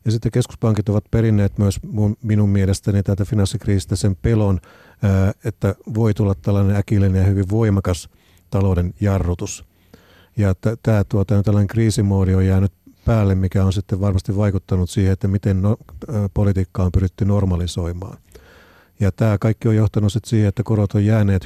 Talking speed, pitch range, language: 145 wpm, 95-115 Hz, Finnish